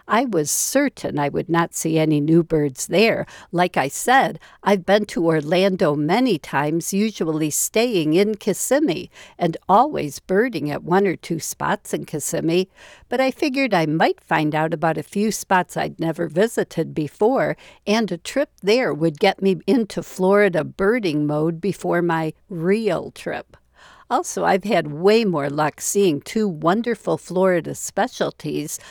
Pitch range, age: 160-215 Hz, 60-79